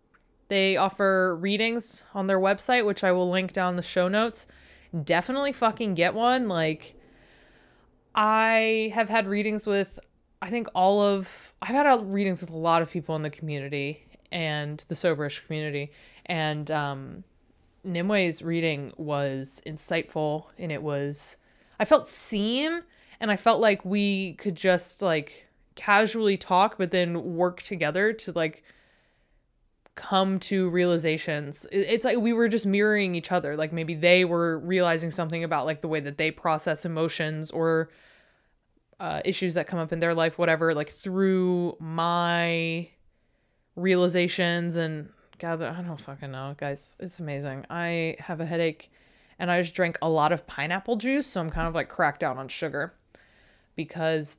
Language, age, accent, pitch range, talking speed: English, 20-39, American, 160-200 Hz, 155 wpm